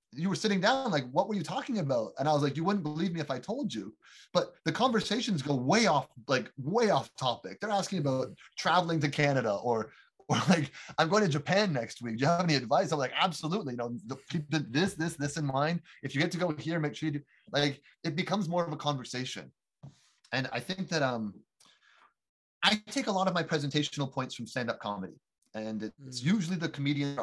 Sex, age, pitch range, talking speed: male, 30-49, 130-185 Hz, 225 wpm